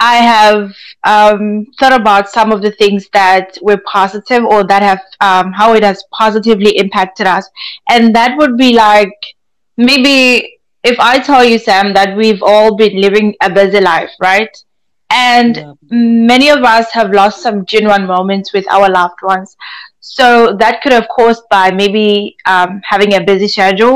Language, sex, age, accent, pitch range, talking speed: English, female, 20-39, South African, 200-240 Hz, 170 wpm